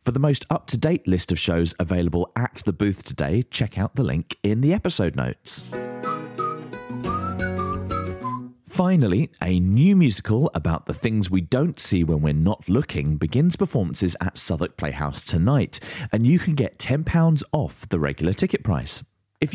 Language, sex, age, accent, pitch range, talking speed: English, male, 30-49, British, 85-135 Hz, 155 wpm